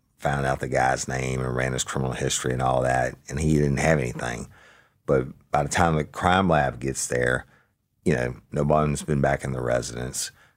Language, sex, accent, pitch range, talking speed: English, male, American, 65-75 Hz, 205 wpm